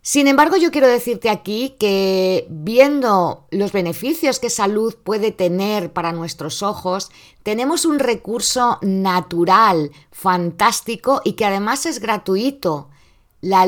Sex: female